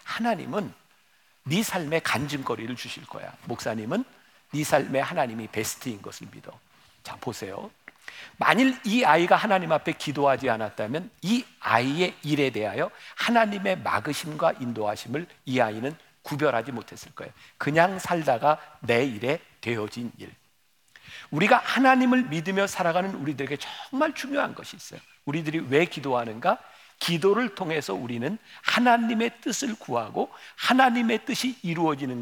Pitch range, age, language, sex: 135-210 Hz, 50-69, Korean, male